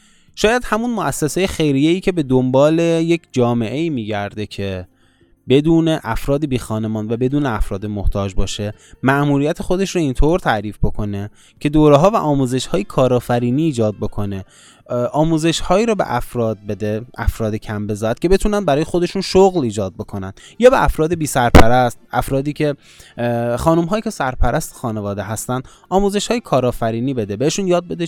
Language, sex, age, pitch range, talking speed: Persian, male, 20-39, 110-155 Hz, 145 wpm